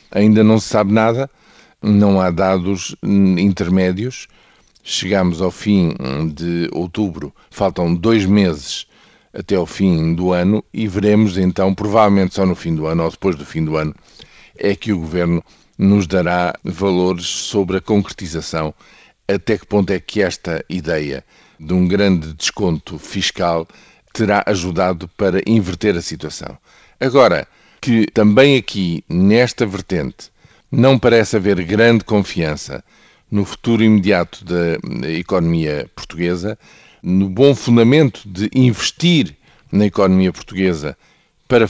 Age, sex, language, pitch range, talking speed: 50-69, male, Portuguese, 90-105 Hz, 130 wpm